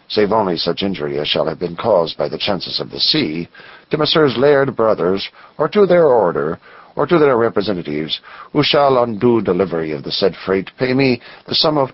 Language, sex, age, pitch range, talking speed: English, male, 50-69, 90-140 Hz, 205 wpm